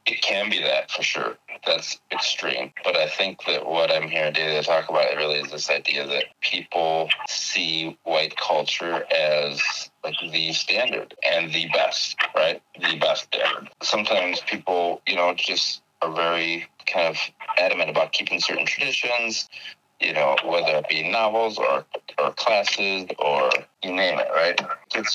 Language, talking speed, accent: English, 165 wpm, American